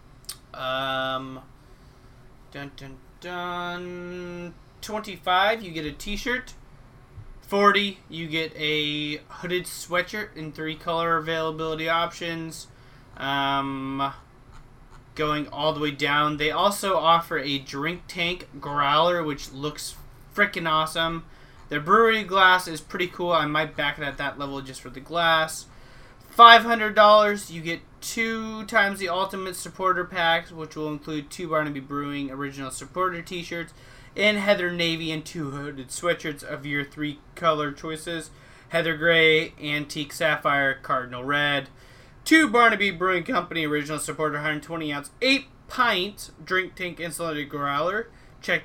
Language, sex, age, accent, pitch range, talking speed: English, male, 30-49, American, 140-180 Hz, 130 wpm